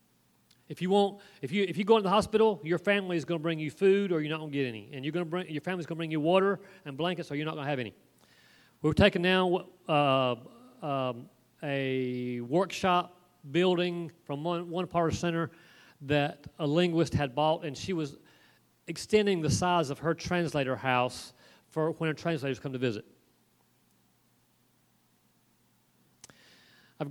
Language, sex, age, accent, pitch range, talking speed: English, male, 40-59, American, 140-180 Hz, 195 wpm